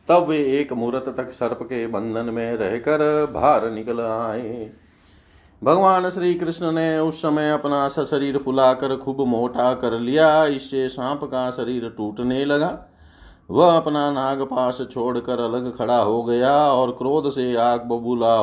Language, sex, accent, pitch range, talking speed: Hindi, male, native, 115-140 Hz, 145 wpm